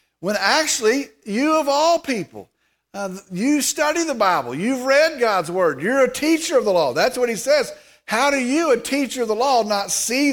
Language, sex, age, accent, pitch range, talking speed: English, male, 50-69, American, 170-260 Hz, 205 wpm